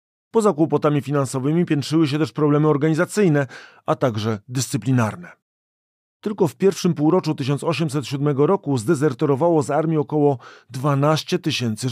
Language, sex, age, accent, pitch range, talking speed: Polish, male, 40-59, native, 130-155 Hz, 115 wpm